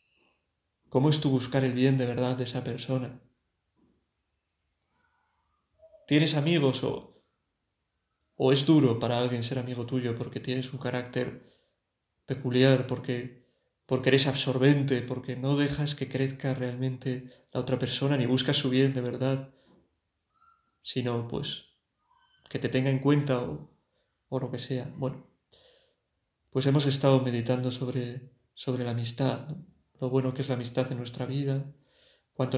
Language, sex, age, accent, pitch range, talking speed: Spanish, male, 20-39, Spanish, 125-135 Hz, 145 wpm